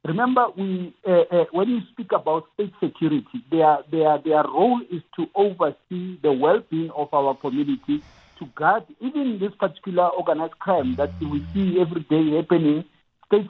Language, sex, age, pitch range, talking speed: English, male, 50-69, 145-190 Hz, 160 wpm